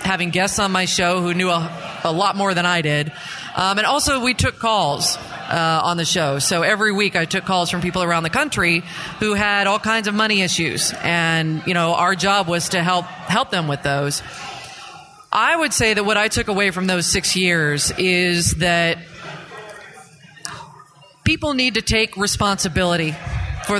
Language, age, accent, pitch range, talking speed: English, 30-49, American, 170-210 Hz, 185 wpm